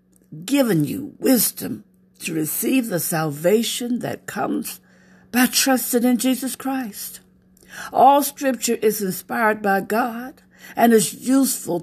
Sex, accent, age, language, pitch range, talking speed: female, American, 60-79, English, 165-230 Hz, 115 wpm